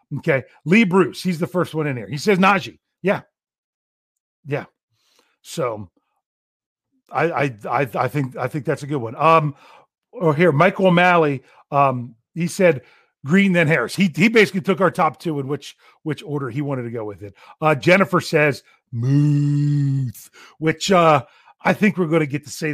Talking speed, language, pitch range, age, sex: 175 wpm, English, 130-180 Hz, 40-59, male